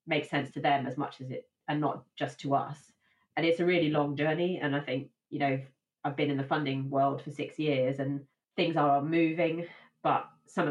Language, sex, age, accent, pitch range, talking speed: English, female, 20-39, British, 140-155 Hz, 225 wpm